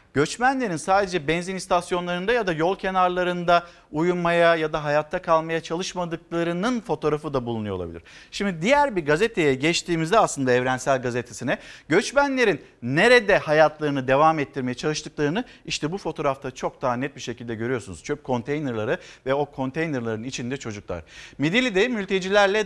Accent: native